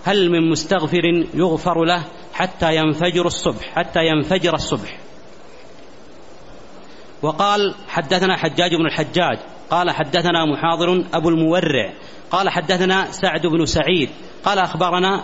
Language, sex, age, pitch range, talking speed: Arabic, male, 40-59, 165-185 Hz, 110 wpm